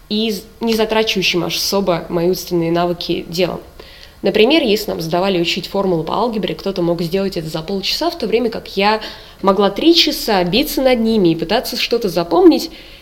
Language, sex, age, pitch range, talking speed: Russian, female, 20-39, 180-235 Hz, 170 wpm